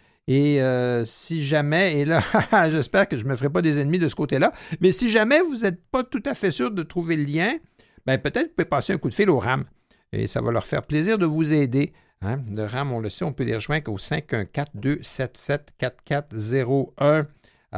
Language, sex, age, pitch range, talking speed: French, male, 60-79, 115-155 Hz, 220 wpm